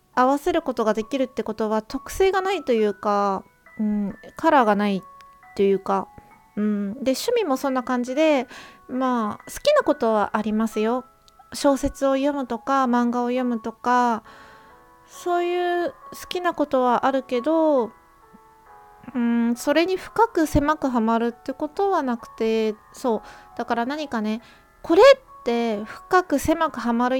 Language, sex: Japanese, female